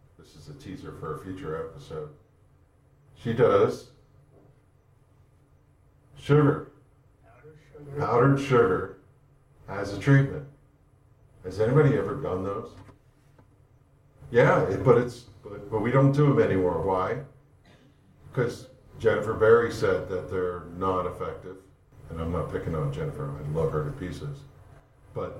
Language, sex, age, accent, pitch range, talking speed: English, male, 50-69, American, 90-140 Hz, 120 wpm